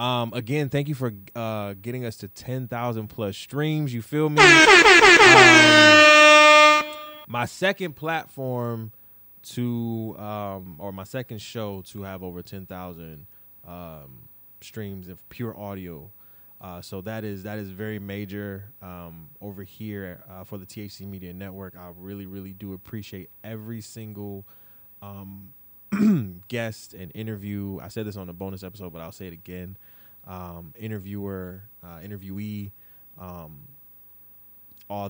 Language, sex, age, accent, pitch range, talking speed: English, male, 20-39, American, 90-110 Hz, 135 wpm